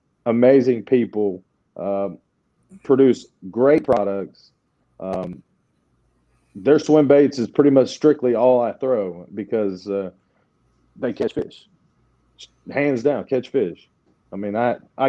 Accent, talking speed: American, 115 wpm